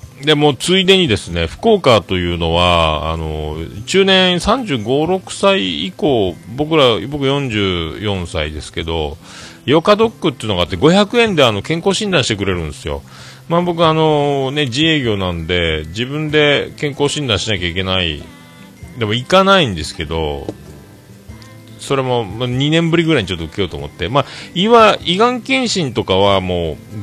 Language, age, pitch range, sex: Japanese, 40-59, 85-140 Hz, male